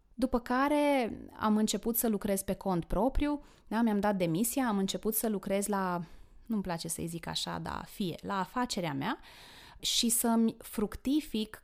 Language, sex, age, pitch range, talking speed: Romanian, female, 20-39, 190-240 Hz, 155 wpm